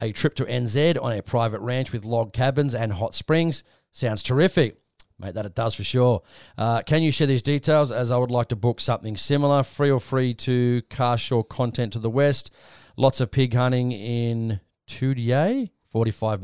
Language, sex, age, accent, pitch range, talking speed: English, male, 40-59, Australian, 110-135 Hz, 195 wpm